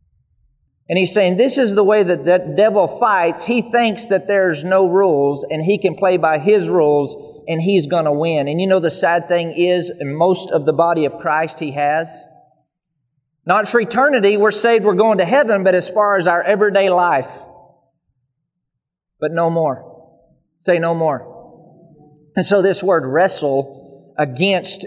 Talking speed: 175 wpm